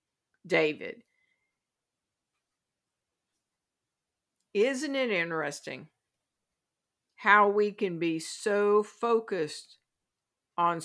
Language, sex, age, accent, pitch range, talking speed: English, female, 50-69, American, 175-230 Hz, 60 wpm